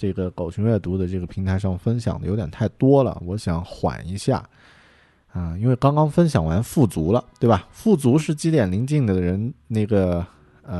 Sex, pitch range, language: male, 85-120 Hz, Chinese